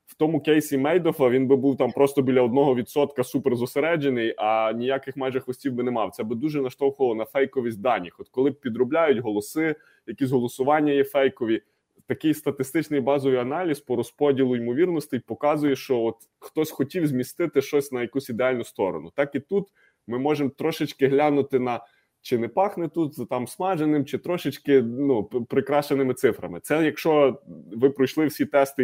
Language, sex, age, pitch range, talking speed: Ukrainian, male, 20-39, 125-150 Hz, 165 wpm